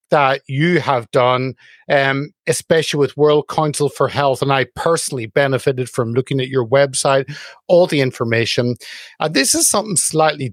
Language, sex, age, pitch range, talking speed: English, male, 50-69, 135-170 Hz, 160 wpm